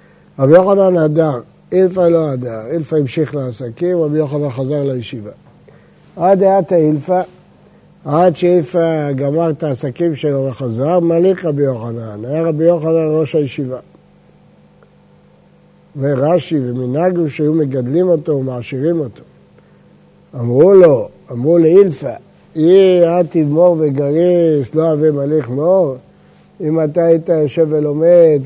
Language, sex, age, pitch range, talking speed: Hebrew, male, 60-79, 145-175 Hz, 115 wpm